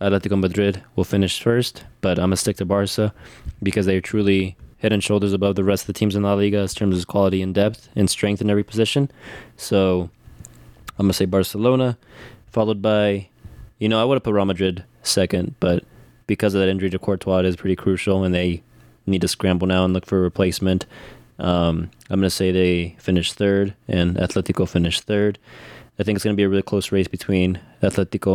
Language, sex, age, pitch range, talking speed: English, male, 20-39, 95-105 Hz, 210 wpm